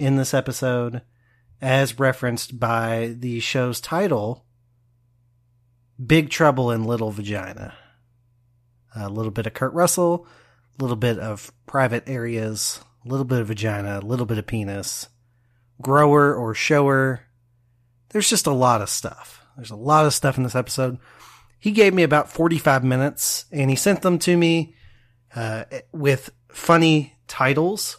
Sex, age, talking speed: male, 30-49, 150 wpm